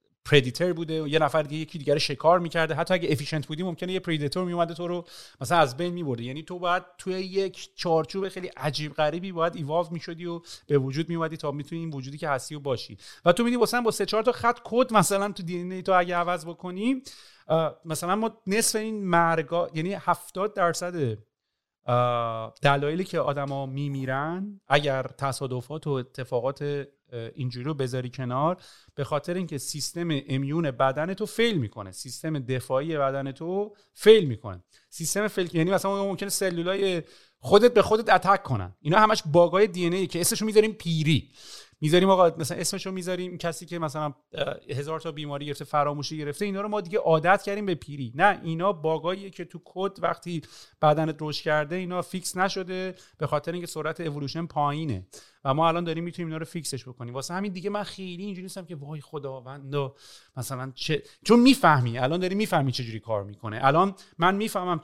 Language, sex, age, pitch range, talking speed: Persian, male, 40-59, 145-185 Hz, 180 wpm